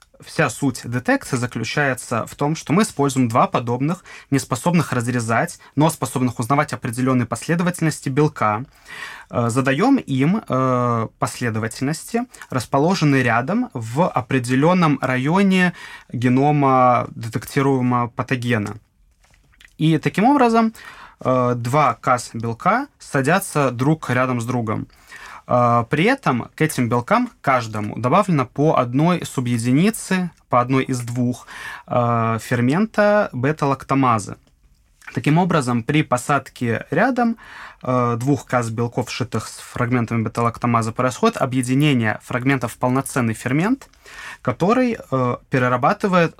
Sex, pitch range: male, 120-150 Hz